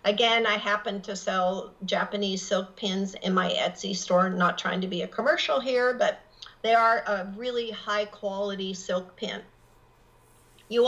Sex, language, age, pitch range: female, English, 50-69, 190-230 Hz